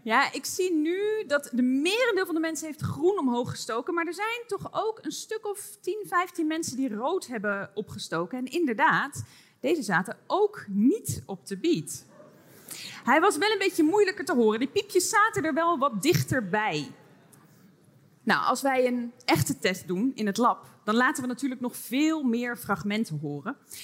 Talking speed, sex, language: 180 wpm, female, Dutch